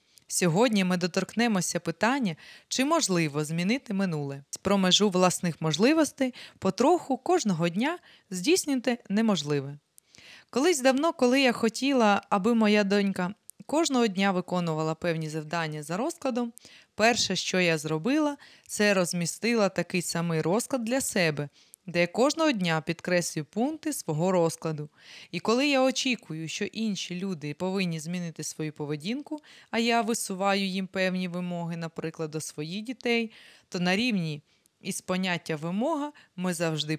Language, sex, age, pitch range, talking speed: Ukrainian, female, 20-39, 165-240 Hz, 130 wpm